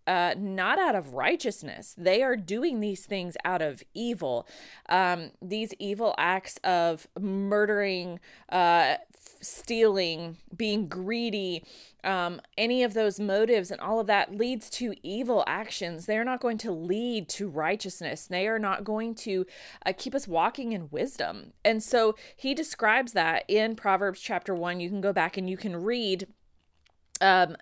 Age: 20-39